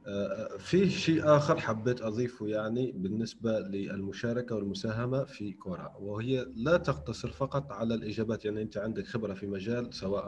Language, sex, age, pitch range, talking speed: Arabic, male, 40-59, 110-140 Hz, 140 wpm